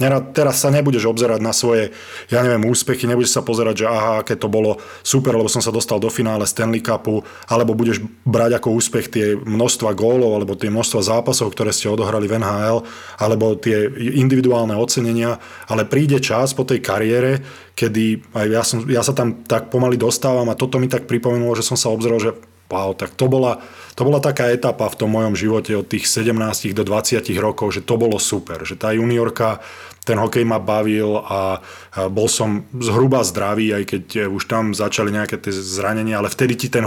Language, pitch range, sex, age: Slovak, 105-120 Hz, male, 20-39